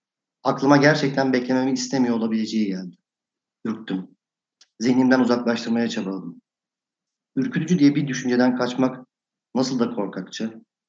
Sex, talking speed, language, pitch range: male, 100 wpm, Turkish, 110-135 Hz